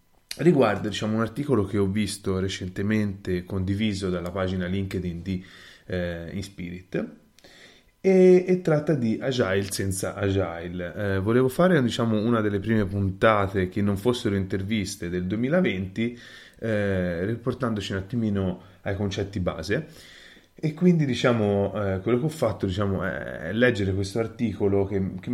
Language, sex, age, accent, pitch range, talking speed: Italian, male, 20-39, native, 95-120 Hz, 135 wpm